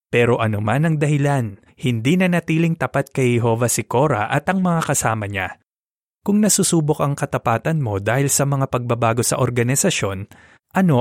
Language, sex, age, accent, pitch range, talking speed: Filipino, male, 20-39, native, 115-150 Hz, 165 wpm